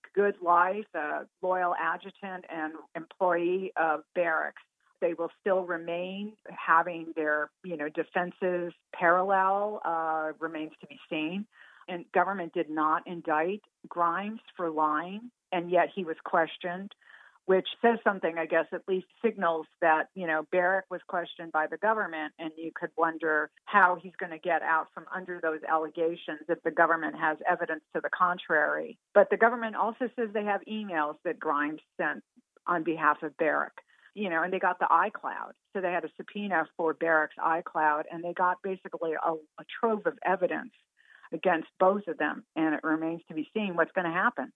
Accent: American